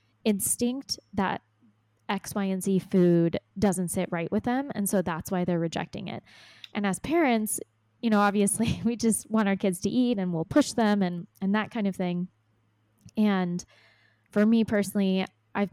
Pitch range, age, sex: 175-205 Hz, 20-39, female